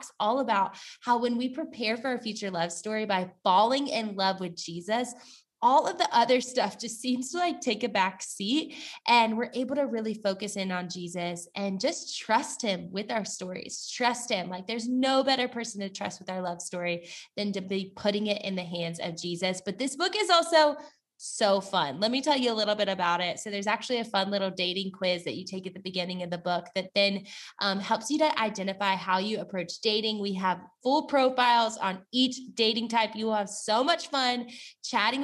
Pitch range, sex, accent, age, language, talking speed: 190-255 Hz, female, American, 20-39, English, 220 wpm